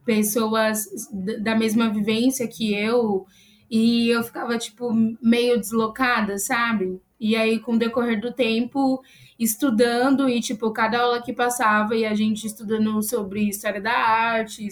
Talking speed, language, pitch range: 145 wpm, Portuguese, 215-250 Hz